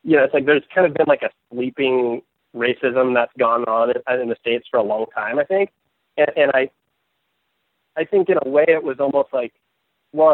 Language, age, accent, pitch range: English, 30-49, American, 120-155 Hz